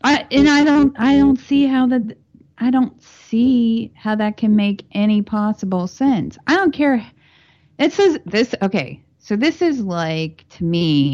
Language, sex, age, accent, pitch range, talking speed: English, female, 30-49, American, 140-205 Hz, 165 wpm